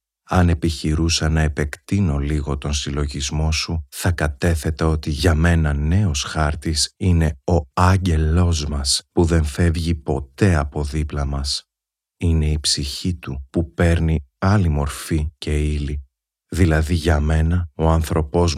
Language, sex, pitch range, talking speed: Greek, male, 75-85 Hz, 130 wpm